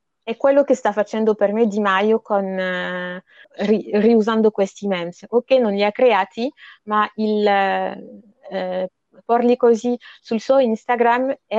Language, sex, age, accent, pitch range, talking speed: Italian, female, 30-49, native, 185-230 Hz, 155 wpm